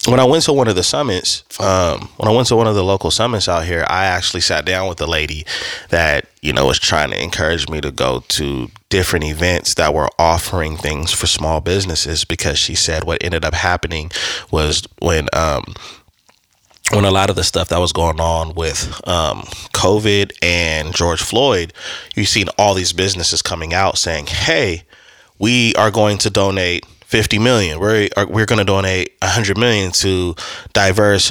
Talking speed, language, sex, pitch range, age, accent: 190 wpm, English, male, 85-105 Hz, 20-39, American